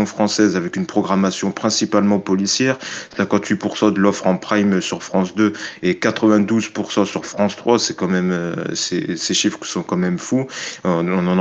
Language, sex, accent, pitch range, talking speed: French, male, French, 95-110 Hz, 160 wpm